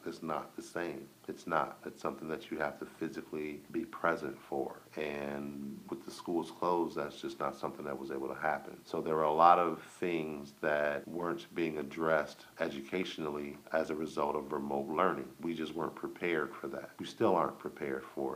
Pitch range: 80-90 Hz